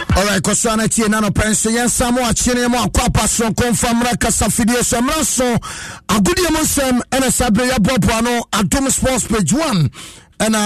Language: English